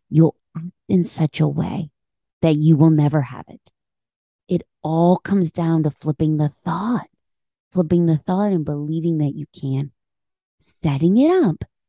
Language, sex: English, female